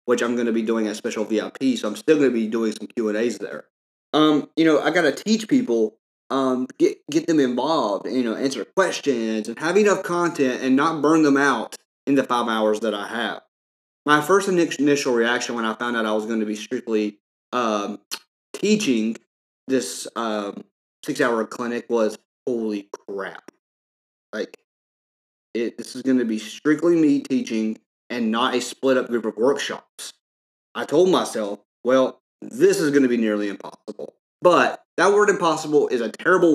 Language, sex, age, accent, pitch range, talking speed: English, male, 30-49, American, 115-160 Hz, 185 wpm